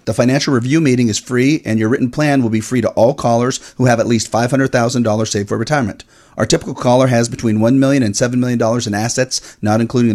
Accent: American